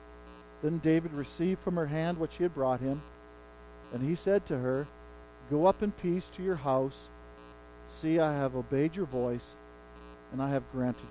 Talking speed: 180 wpm